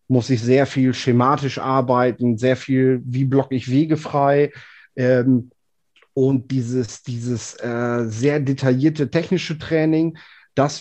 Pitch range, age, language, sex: 115-135 Hz, 30-49, German, male